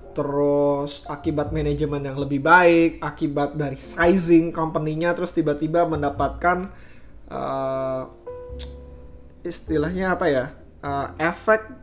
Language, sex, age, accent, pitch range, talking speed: Indonesian, male, 20-39, native, 150-185 Hz, 95 wpm